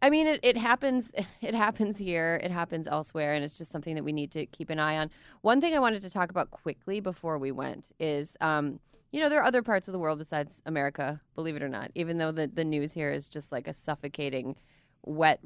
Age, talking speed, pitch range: 20-39, 245 wpm, 145-185 Hz